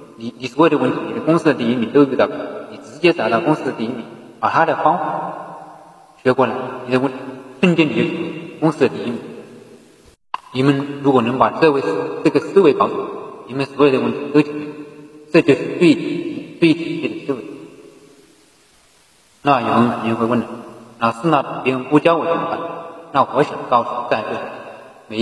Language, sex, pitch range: Chinese, male, 125-155 Hz